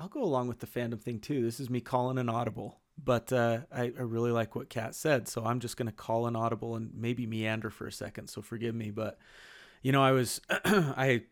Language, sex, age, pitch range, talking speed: English, male, 30-49, 110-135 Hz, 245 wpm